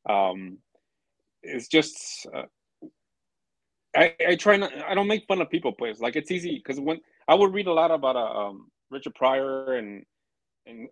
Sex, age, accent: male, 30-49, American